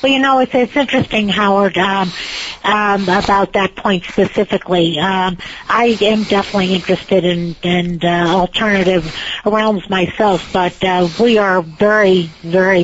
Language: English